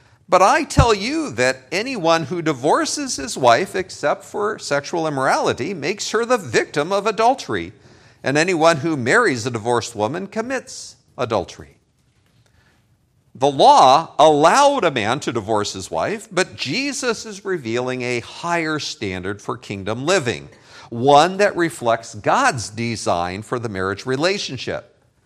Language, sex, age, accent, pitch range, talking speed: English, male, 50-69, American, 120-180 Hz, 135 wpm